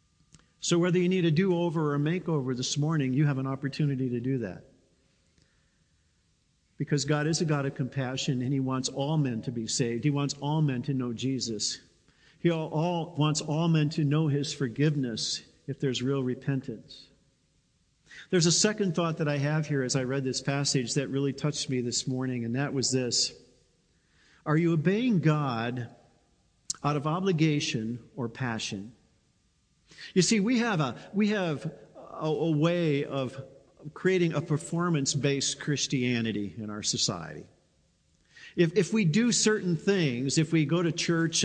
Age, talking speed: 50-69, 165 wpm